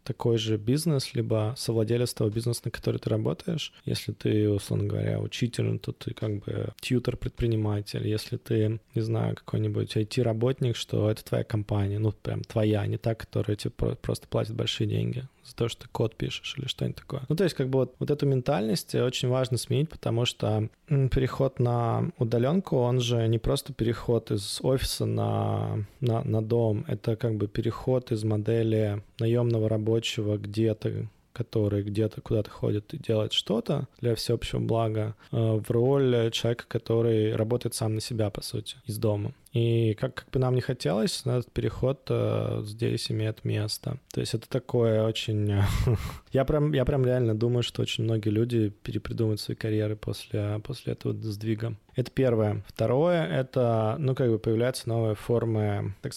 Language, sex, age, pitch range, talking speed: Russian, male, 20-39, 110-125 Hz, 165 wpm